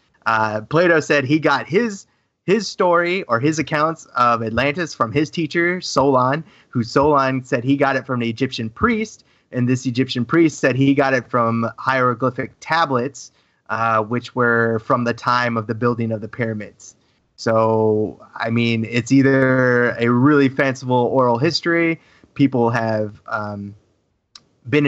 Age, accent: 30-49, American